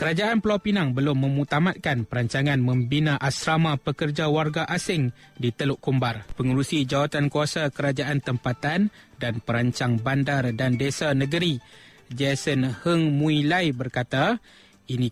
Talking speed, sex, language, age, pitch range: 120 wpm, male, Malay, 20-39, 130-155 Hz